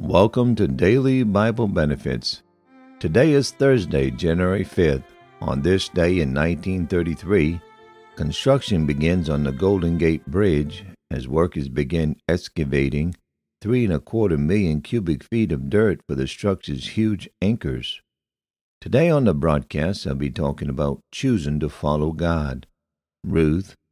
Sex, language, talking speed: male, English, 135 wpm